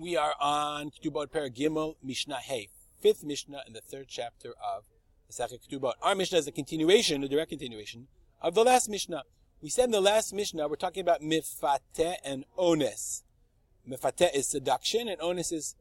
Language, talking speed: English, 180 wpm